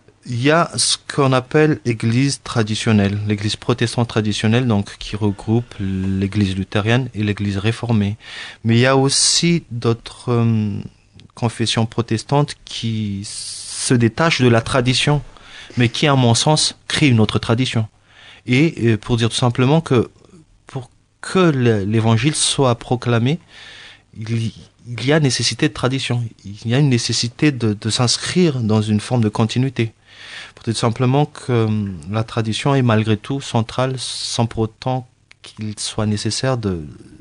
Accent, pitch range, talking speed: French, 105-130 Hz, 145 wpm